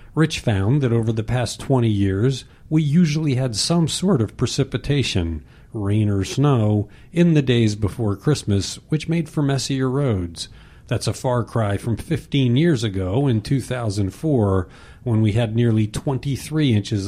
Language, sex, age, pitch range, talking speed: English, male, 50-69, 105-135 Hz, 155 wpm